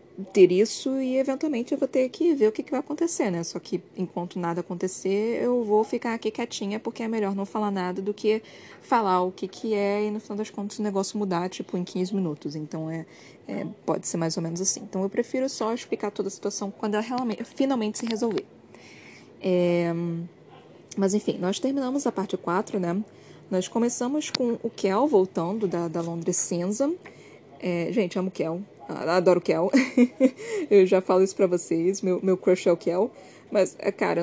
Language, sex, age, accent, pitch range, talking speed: Portuguese, female, 20-39, Brazilian, 185-240 Hz, 200 wpm